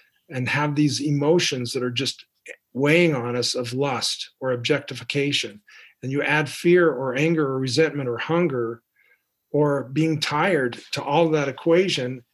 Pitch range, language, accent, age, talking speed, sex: 125-155 Hz, English, American, 40-59, 150 wpm, male